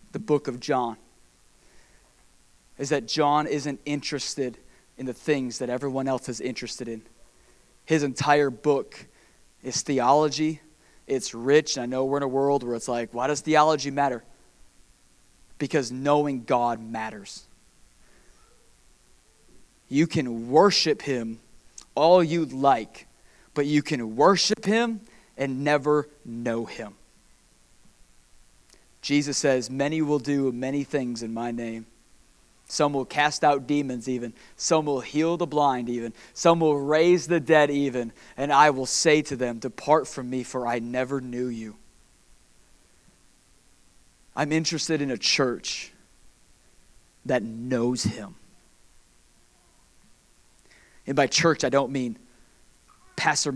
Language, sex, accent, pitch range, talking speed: English, male, American, 120-150 Hz, 130 wpm